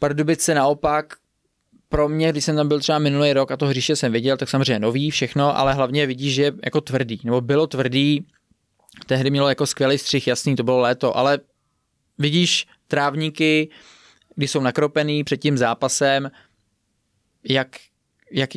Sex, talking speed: male, 160 wpm